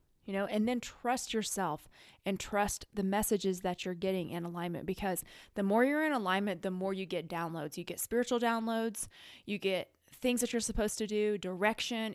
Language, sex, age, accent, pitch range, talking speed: English, female, 20-39, American, 185-220 Hz, 195 wpm